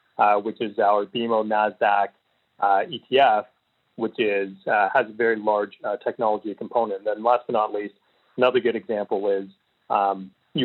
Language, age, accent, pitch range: English, 30-49, American, 105-120 Hz